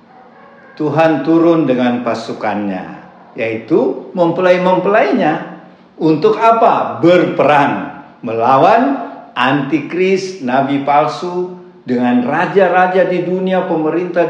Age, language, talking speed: 50-69, Indonesian, 75 wpm